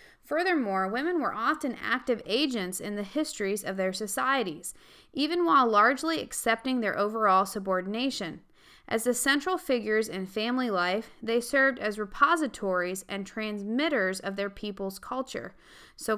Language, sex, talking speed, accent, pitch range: English, female, 135 wpm, American, 195-265 Hz